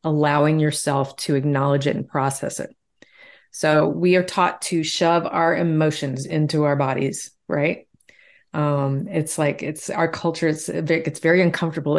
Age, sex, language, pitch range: 40-59, female, English, 145-180 Hz